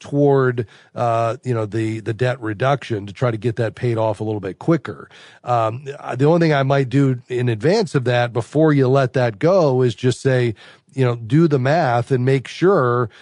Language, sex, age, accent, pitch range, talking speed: English, male, 40-59, American, 120-140 Hz, 210 wpm